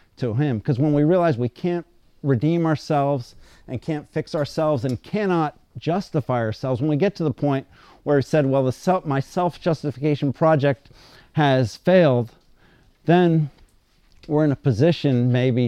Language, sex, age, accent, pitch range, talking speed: English, male, 50-69, American, 125-150 Hz, 155 wpm